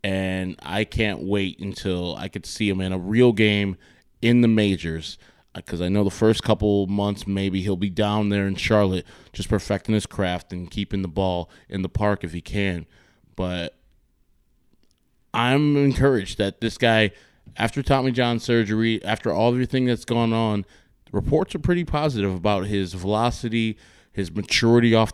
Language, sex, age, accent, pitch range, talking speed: English, male, 20-39, American, 95-110 Hz, 165 wpm